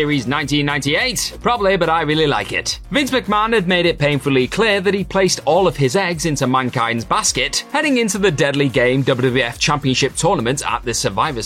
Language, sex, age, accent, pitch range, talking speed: English, male, 30-49, British, 145-215 Hz, 190 wpm